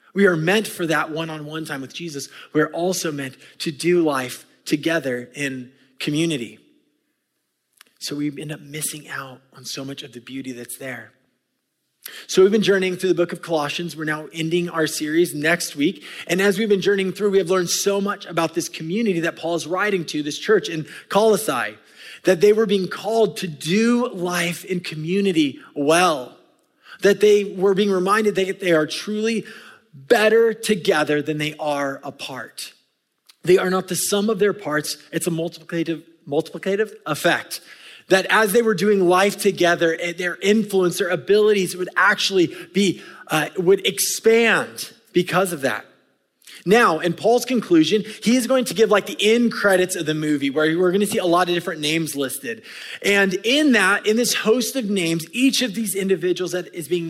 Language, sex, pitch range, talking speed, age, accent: English, male, 155-205 Hz, 180 wpm, 20-39, American